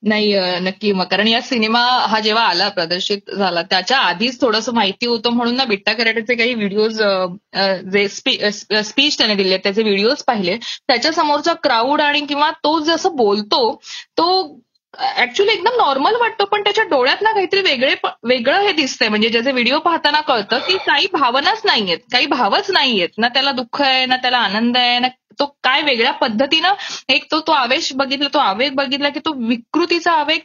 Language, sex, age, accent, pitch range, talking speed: Marathi, female, 20-39, native, 225-300 Hz, 170 wpm